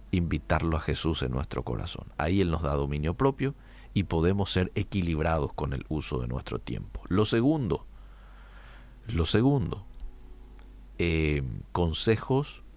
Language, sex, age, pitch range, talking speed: Spanish, male, 50-69, 85-125 Hz, 130 wpm